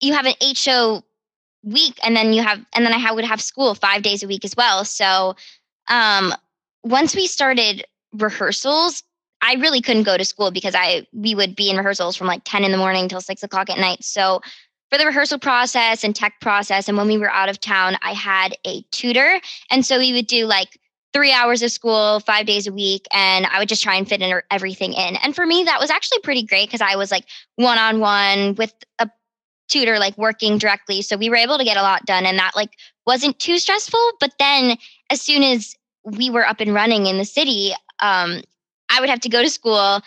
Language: English